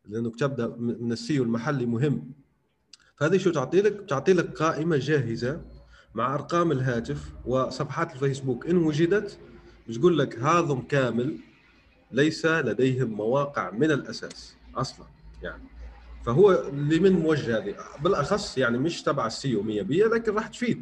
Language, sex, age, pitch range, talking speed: Arabic, male, 30-49, 115-150 Hz, 135 wpm